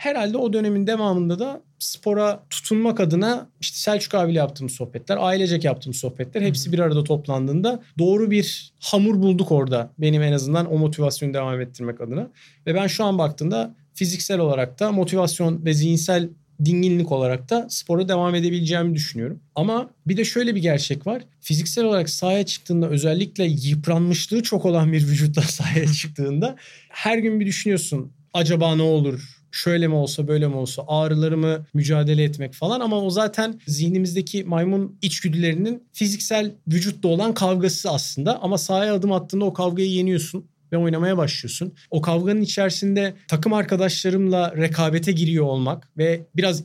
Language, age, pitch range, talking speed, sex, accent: Turkish, 40-59, 155-195 Hz, 150 wpm, male, native